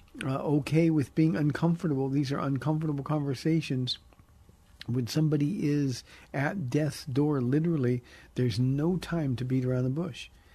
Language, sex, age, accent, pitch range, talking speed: English, male, 50-69, American, 115-145 Hz, 135 wpm